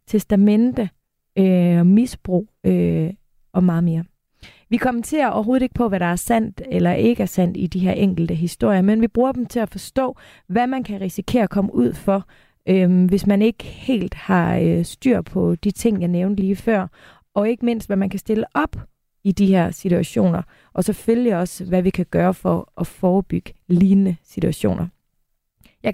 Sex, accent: female, native